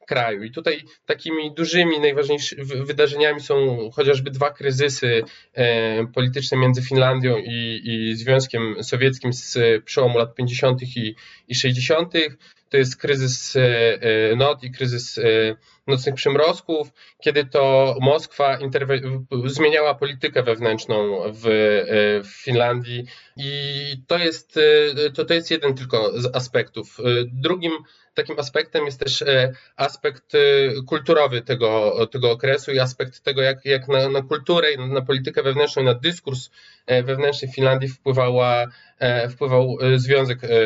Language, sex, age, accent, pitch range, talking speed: Polish, male, 20-39, native, 125-145 Hz, 120 wpm